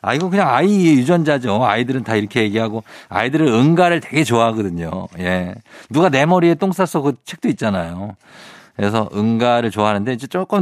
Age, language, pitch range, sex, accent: 50-69, Korean, 105-150 Hz, male, native